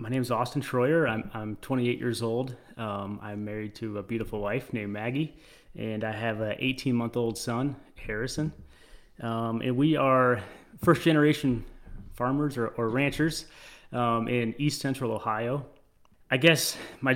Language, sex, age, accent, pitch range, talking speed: English, male, 30-49, American, 115-135 Hz, 160 wpm